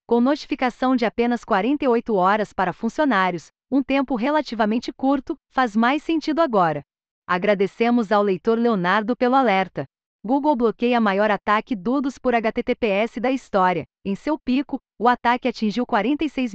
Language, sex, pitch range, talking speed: Portuguese, female, 205-265 Hz, 140 wpm